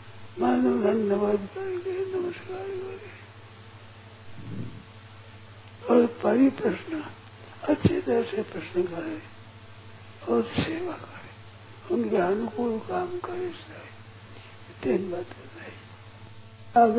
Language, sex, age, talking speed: Hindi, male, 60-79, 80 wpm